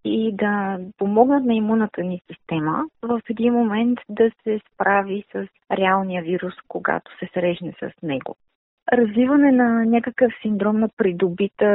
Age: 30-49